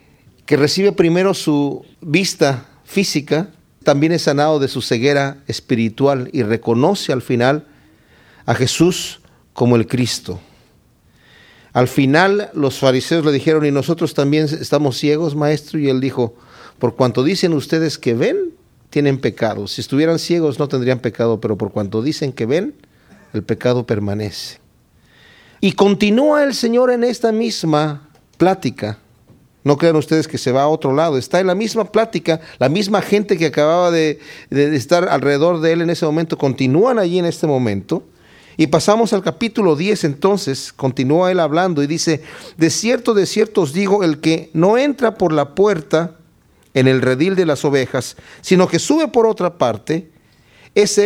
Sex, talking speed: male, 160 wpm